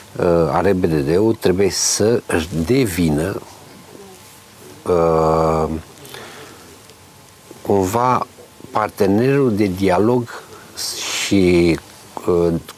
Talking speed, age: 60 wpm, 50-69